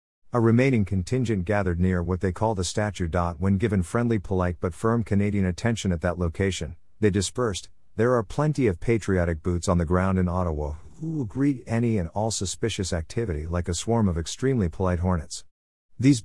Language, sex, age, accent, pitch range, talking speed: English, male, 50-69, American, 85-115 Hz, 180 wpm